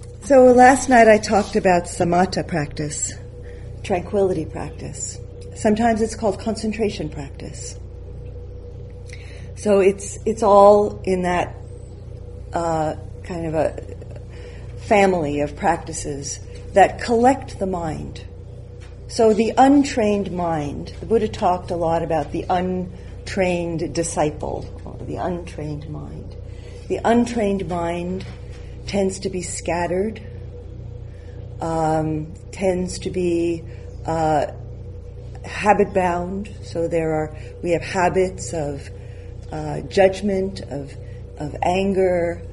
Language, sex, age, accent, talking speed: English, female, 50-69, American, 105 wpm